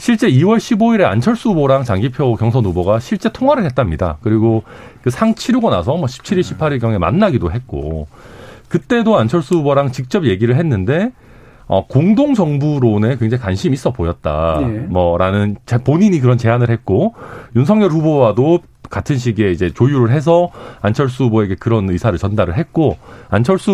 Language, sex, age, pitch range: Korean, male, 40-59, 105-170 Hz